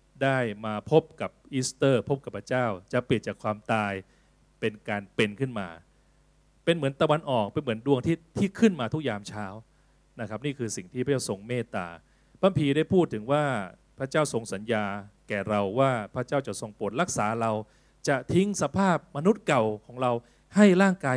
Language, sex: Thai, male